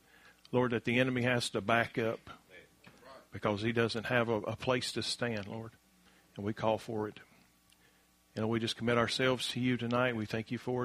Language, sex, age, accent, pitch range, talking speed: English, male, 40-59, American, 115-130 Hz, 195 wpm